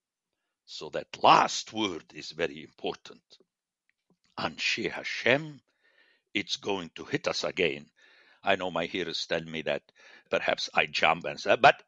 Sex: male